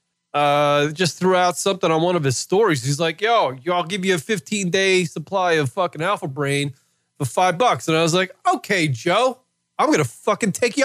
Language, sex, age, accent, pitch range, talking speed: English, male, 30-49, American, 140-180 Hz, 215 wpm